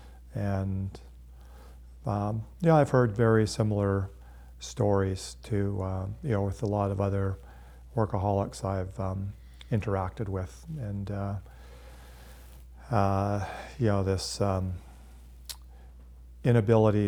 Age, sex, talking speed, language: 40-59, male, 105 wpm, English